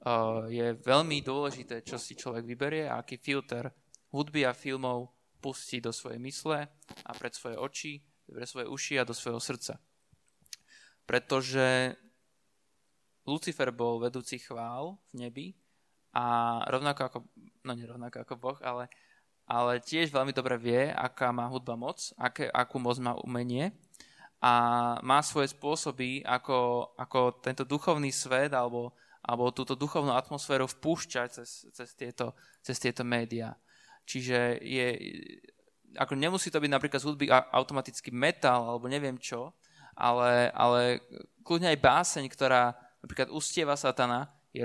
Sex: male